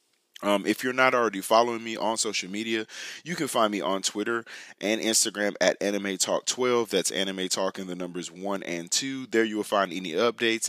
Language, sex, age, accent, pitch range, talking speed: English, male, 20-39, American, 95-115 Hz, 210 wpm